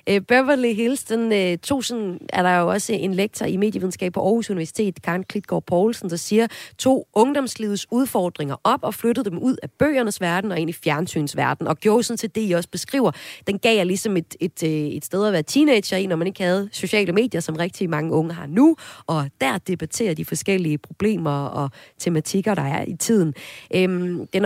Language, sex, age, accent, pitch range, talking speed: Danish, female, 30-49, native, 165-220 Hz, 200 wpm